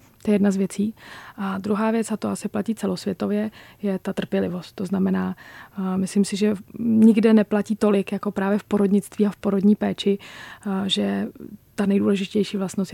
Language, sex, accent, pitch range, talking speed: Czech, female, native, 190-210 Hz, 165 wpm